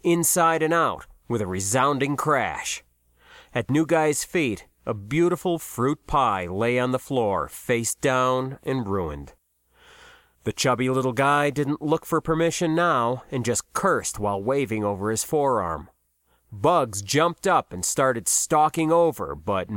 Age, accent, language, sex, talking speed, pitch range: 30-49, American, English, male, 145 wpm, 120-165 Hz